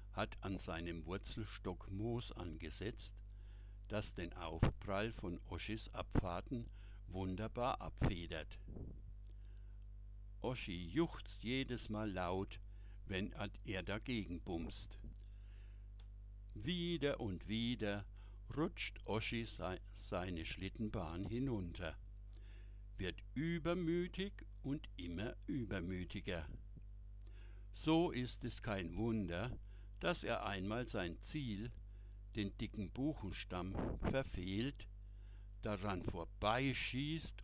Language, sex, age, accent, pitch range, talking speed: German, male, 60-79, German, 100-115 Hz, 85 wpm